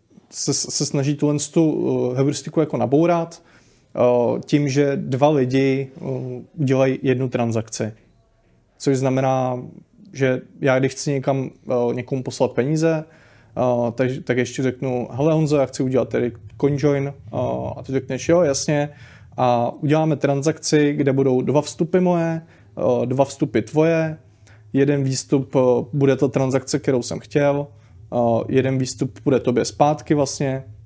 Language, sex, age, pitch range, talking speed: Czech, male, 30-49, 125-145 Hz, 140 wpm